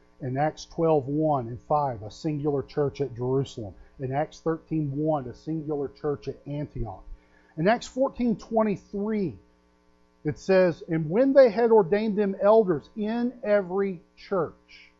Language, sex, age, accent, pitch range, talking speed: English, male, 40-59, American, 125-170 Hz, 145 wpm